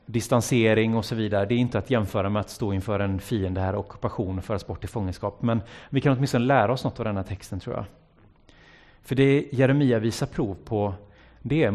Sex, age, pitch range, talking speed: male, 30-49, 100-130 Hz, 225 wpm